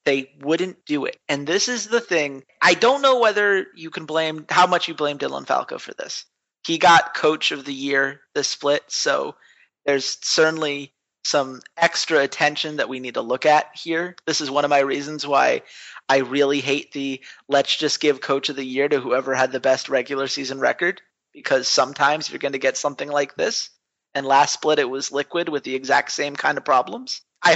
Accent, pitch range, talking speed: American, 140-235 Hz, 205 wpm